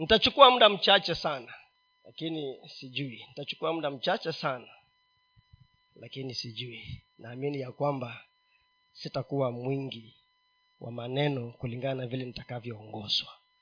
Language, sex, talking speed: Swahili, male, 95 wpm